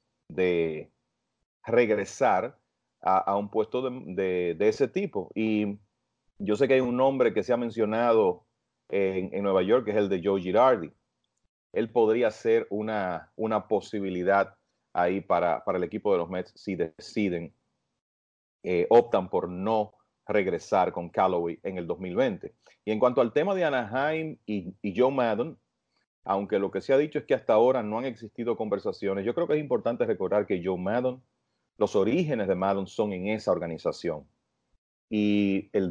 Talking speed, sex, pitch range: 170 wpm, male, 95-120 Hz